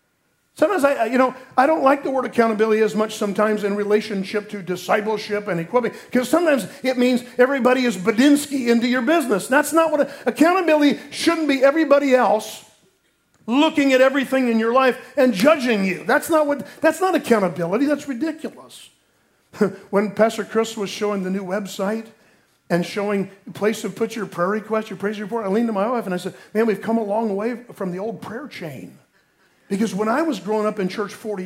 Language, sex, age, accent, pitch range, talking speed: English, male, 50-69, American, 210-285 Hz, 195 wpm